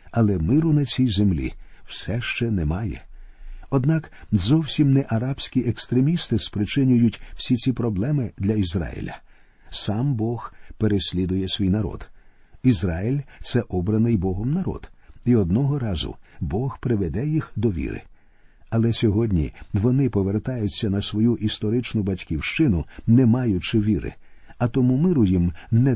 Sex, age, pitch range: male, 50-69, 95-130 Hz